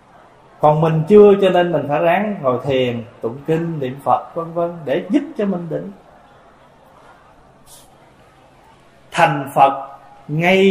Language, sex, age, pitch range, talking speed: Vietnamese, male, 20-39, 140-200 Hz, 135 wpm